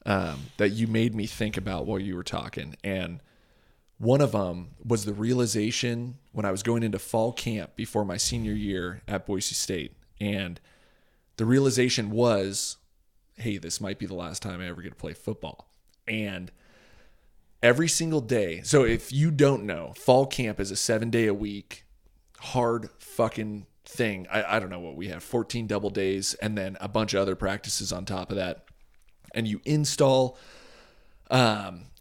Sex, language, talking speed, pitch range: male, English, 170 wpm, 95-120 Hz